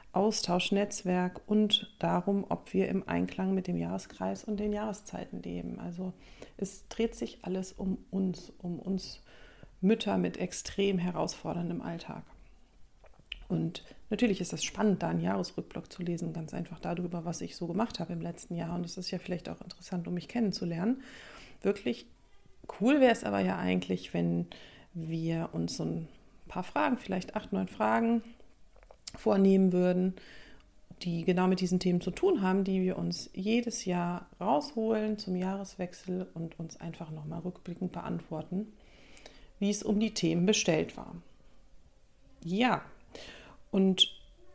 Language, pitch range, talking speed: German, 170-210 Hz, 150 wpm